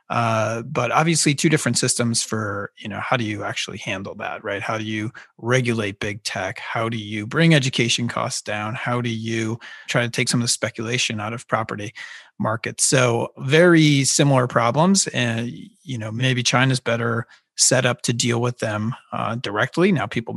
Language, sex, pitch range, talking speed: English, male, 115-140 Hz, 185 wpm